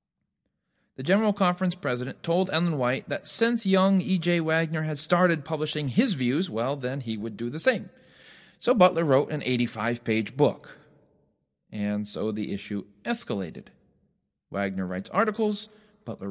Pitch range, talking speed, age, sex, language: 130-185 Hz, 145 wpm, 40-59, male, English